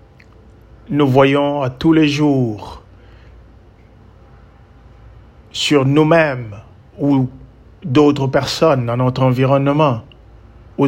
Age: 50-69